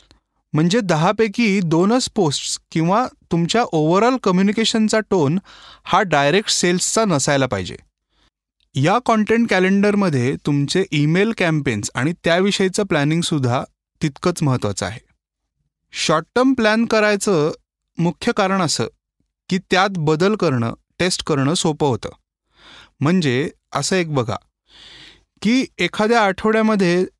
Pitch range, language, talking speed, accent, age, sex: 145-200 Hz, Marathi, 105 wpm, native, 20-39, male